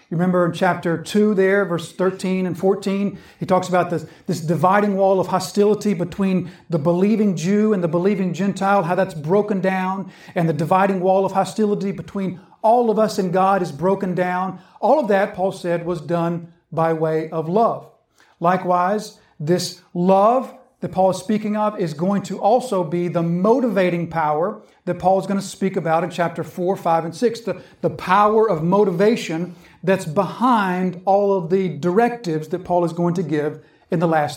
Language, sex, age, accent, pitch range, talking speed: English, male, 50-69, American, 170-200 Hz, 185 wpm